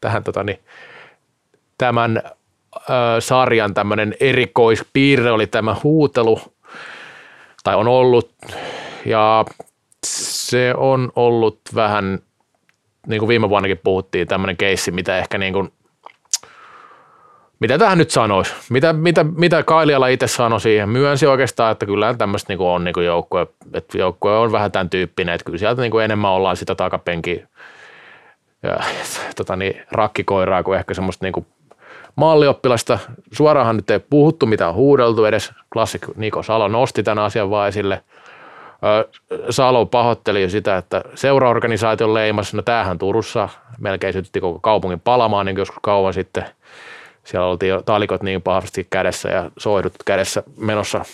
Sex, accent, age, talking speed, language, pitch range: male, native, 30-49, 140 wpm, Finnish, 100-125 Hz